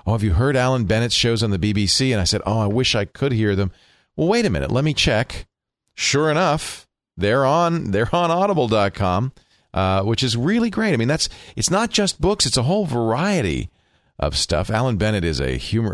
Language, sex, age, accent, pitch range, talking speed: English, male, 40-59, American, 85-120 Hz, 215 wpm